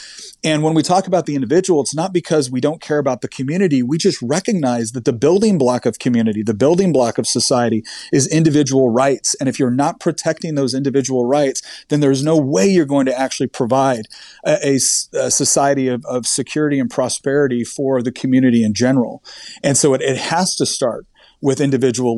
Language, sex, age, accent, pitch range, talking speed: English, male, 40-59, American, 125-155 Hz, 195 wpm